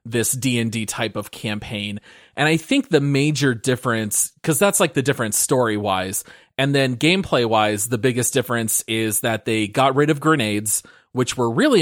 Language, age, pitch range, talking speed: English, 30-49, 115-150 Hz, 185 wpm